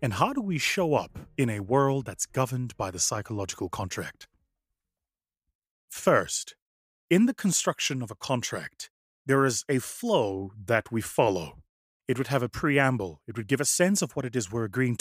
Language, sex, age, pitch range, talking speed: English, male, 30-49, 110-150 Hz, 180 wpm